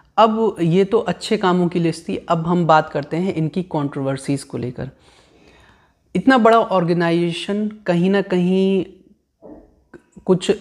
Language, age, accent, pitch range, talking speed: Hindi, 30-49, native, 155-180 Hz, 135 wpm